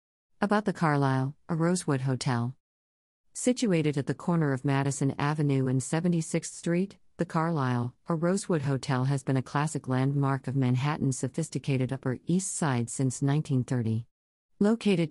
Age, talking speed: 50-69, 140 wpm